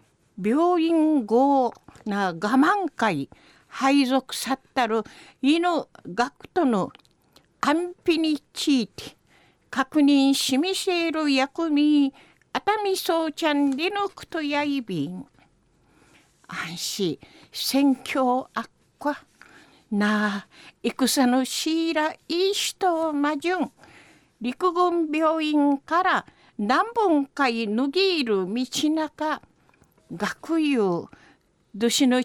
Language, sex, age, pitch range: Japanese, female, 50-69, 260-330 Hz